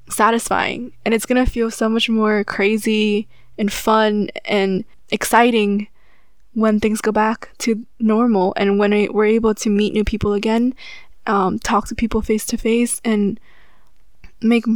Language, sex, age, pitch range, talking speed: English, female, 10-29, 205-230 Hz, 155 wpm